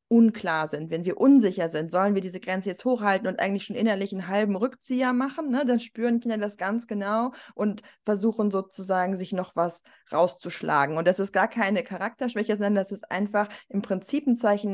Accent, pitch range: German, 180-230 Hz